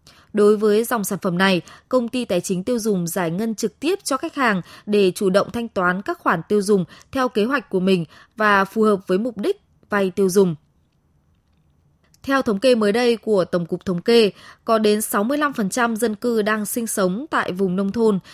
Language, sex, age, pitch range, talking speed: Vietnamese, female, 20-39, 190-250 Hz, 210 wpm